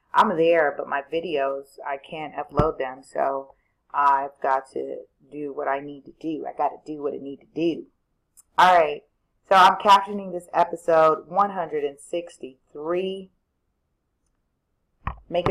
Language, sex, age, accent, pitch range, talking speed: English, female, 30-49, American, 150-200 Hz, 145 wpm